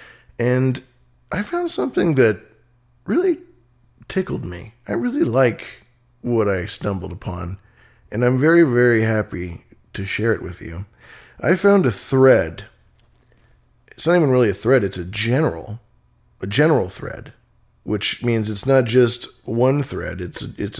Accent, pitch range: American, 105-130 Hz